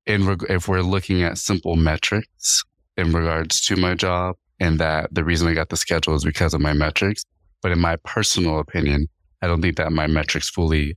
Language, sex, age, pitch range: English, male, 20-39, 80-90 Hz